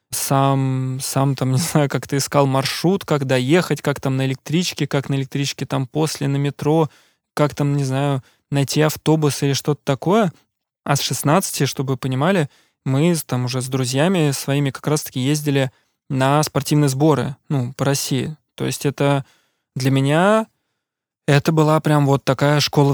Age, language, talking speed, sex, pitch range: 20-39, Russian, 165 wpm, male, 130-155 Hz